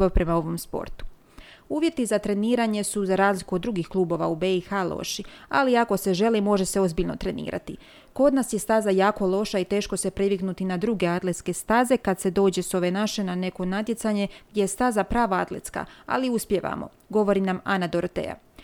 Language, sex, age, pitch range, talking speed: Croatian, female, 30-49, 185-220 Hz, 185 wpm